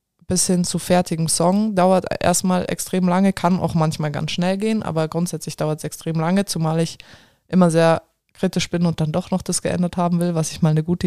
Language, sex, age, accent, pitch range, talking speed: German, female, 20-39, German, 160-180 Hz, 215 wpm